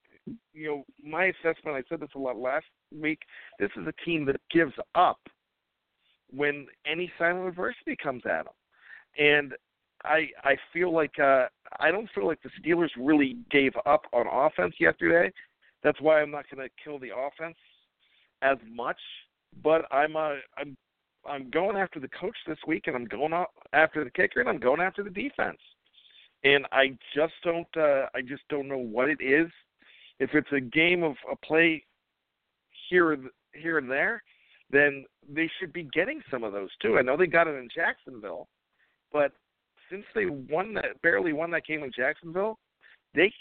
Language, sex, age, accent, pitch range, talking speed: English, male, 50-69, American, 140-170 Hz, 180 wpm